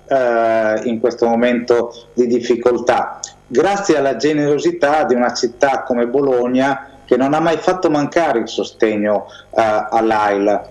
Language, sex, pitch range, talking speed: Italian, male, 115-135 Hz, 130 wpm